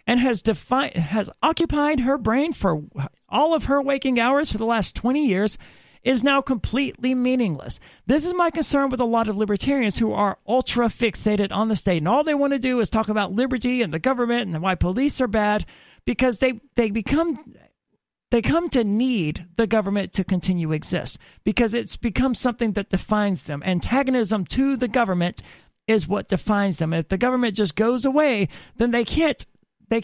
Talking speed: 185 wpm